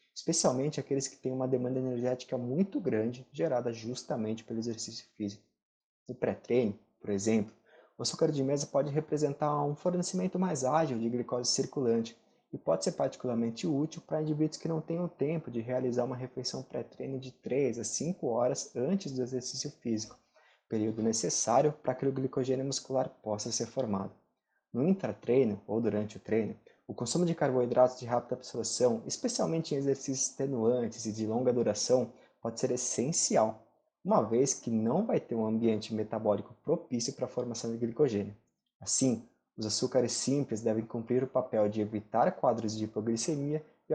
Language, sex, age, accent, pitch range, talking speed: Portuguese, male, 20-39, Brazilian, 115-145 Hz, 160 wpm